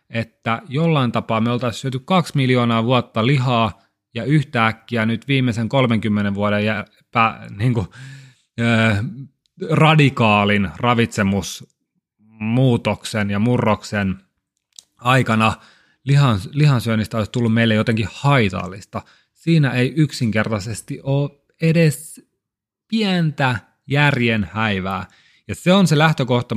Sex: male